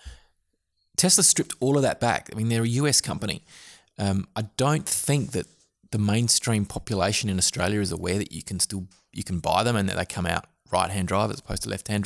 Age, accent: 20-39, Australian